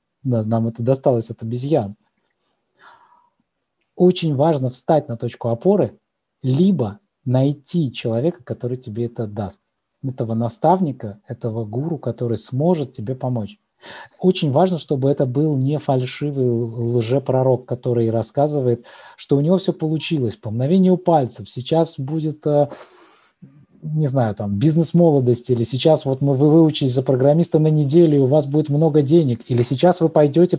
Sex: male